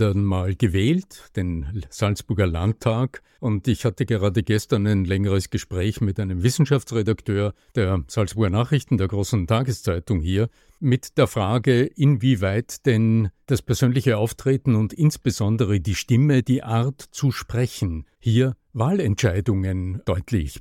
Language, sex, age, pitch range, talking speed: German, male, 50-69, 105-130 Hz, 125 wpm